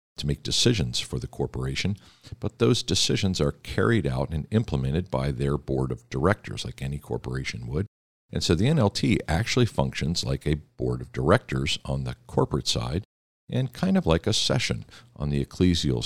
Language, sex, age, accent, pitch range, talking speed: English, male, 50-69, American, 65-90 Hz, 175 wpm